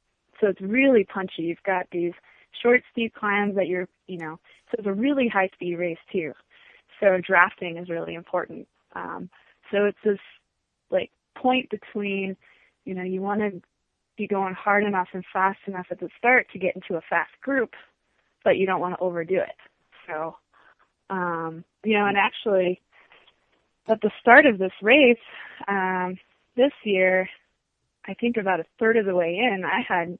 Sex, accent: female, American